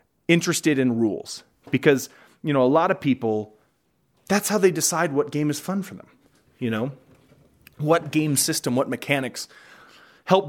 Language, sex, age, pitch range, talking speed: English, male, 30-49, 115-160 Hz, 160 wpm